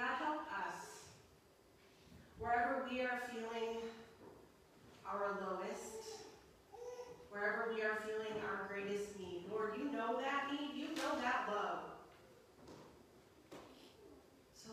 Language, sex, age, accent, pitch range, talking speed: English, female, 30-49, American, 215-250 Hz, 105 wpm